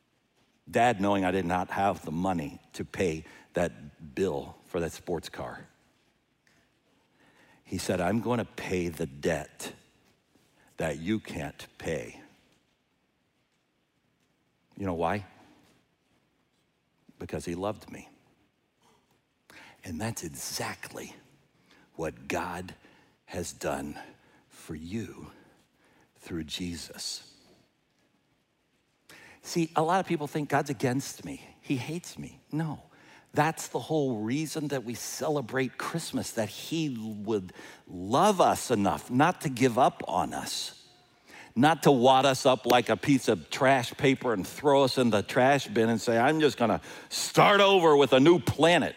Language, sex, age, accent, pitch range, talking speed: English, male, 60-79, American, 100-140 Hz, 130 wpm